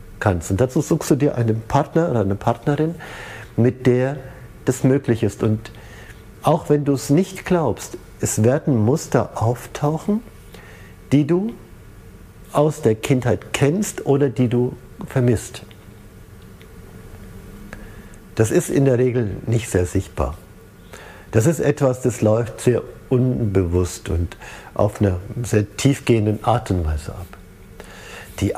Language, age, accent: German, 50-69, German